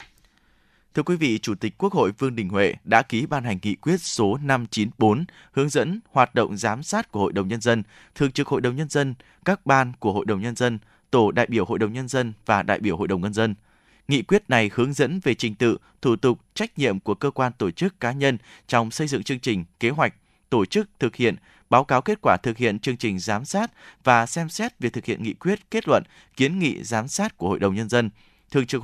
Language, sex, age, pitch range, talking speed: Vietnamese, male, 20-39, 110-155 Hz, 245 wpm